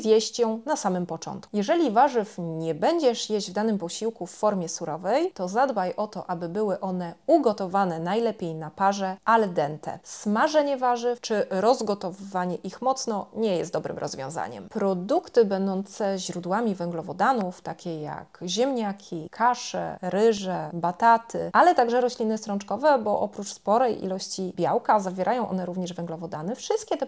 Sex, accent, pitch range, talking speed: female, native, 180-240 Hz, 140 wpm